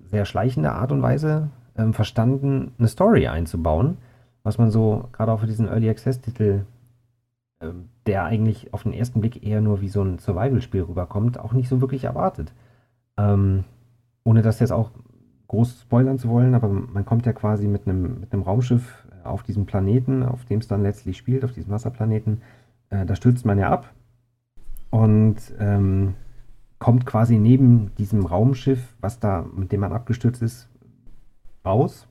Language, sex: German, male